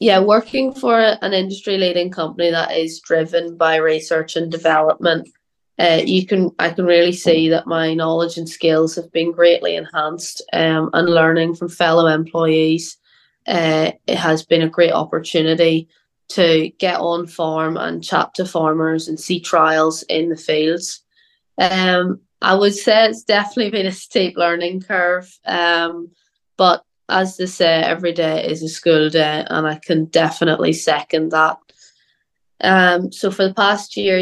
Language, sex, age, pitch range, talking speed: English, female, 20-39, 160-185 Hz, 160 wpm